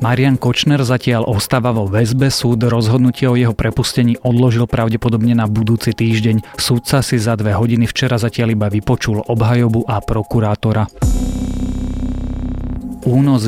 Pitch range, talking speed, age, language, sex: 110-125 Hz, 130 wpm, 30-49, Slovak, male